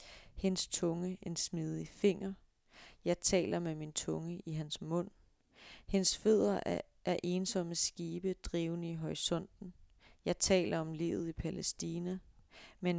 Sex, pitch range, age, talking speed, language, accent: female, 160-190 Hz, 30-49, 135 wpm, Danish, native